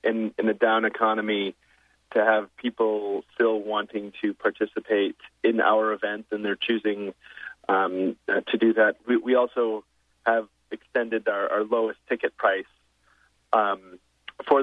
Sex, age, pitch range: male, 30-49, 100-115 Hz